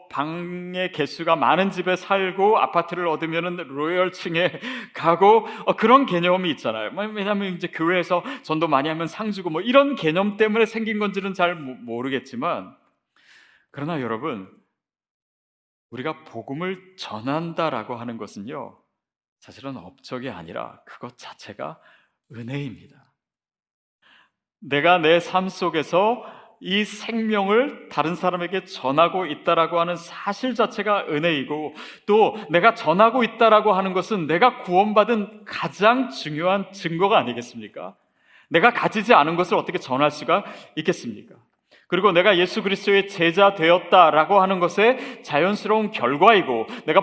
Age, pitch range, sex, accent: 40-59, 165-215 Hz, male, native